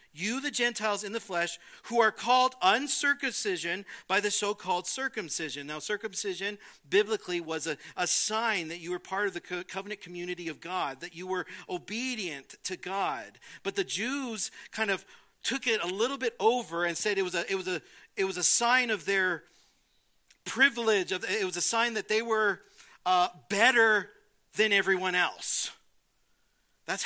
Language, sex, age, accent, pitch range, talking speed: English, male, 40-59, American, 175-235 Hz, 170 wpm